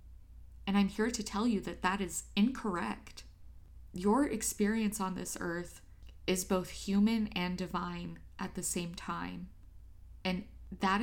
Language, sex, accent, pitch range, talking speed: English, female, American, 175-210 Hz, 140 wpm